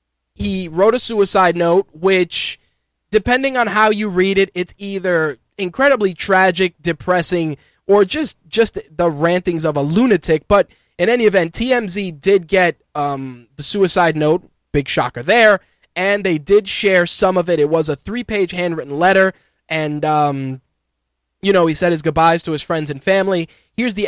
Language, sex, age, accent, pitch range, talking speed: English, male, 20-39, American, 155-195 Hz, 165 wpm